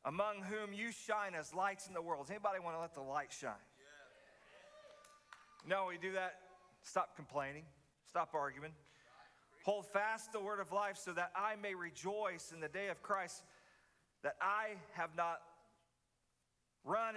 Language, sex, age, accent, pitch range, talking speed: English, male, 40-59, American, 175-225 Hz, 160 wpm